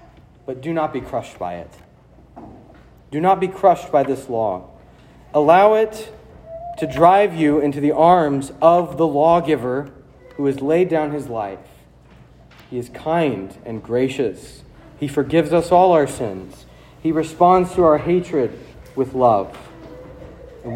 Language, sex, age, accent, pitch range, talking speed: English, male, 40-59, American, 120-165 Hz, 145 wpm